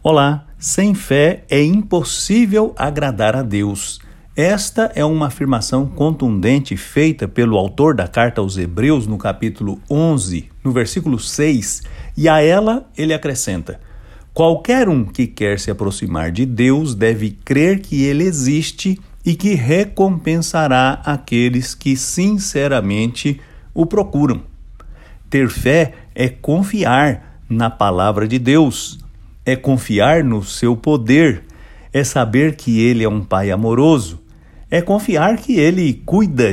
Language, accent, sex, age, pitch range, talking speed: English, Brazilian, male, 60-79, 110-155 Hz, 130 wpm